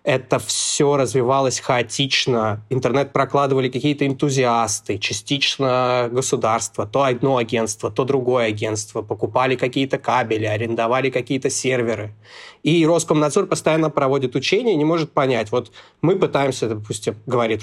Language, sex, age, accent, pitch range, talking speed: Russian, male, 20-39, native, 120-140 Hz, 125 wpm